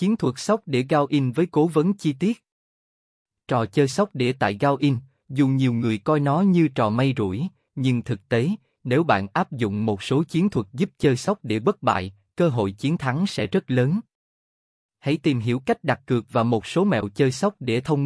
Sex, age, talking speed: male, 20-39, 210 wpm